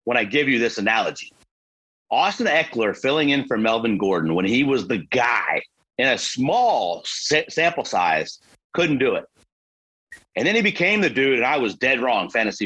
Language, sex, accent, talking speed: English, male, American, 185 wpm